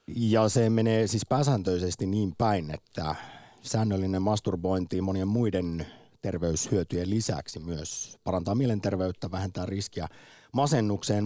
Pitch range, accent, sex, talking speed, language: 90-115 Hz, native, male, 105 wpm, Finnish